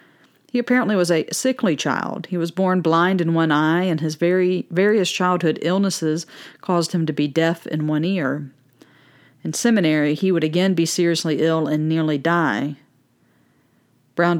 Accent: American